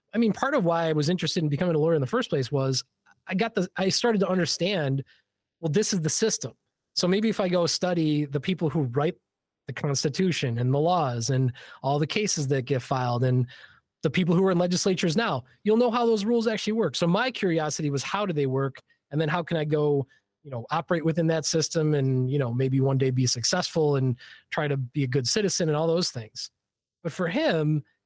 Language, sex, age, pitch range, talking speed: English, male, 20-39, 135-190 Hz, 230 wpm